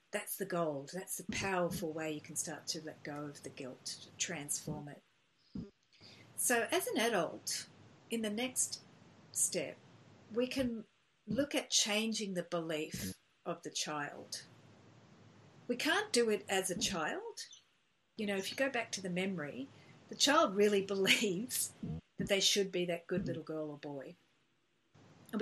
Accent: Australian